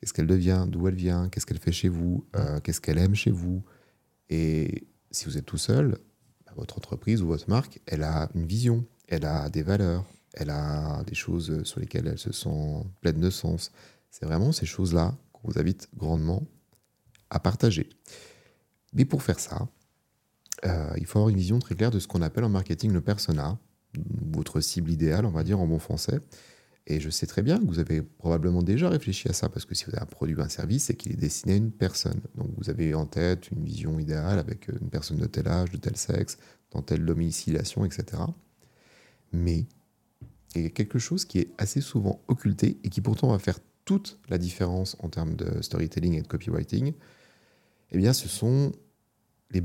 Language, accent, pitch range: French, French, 85-115 Hz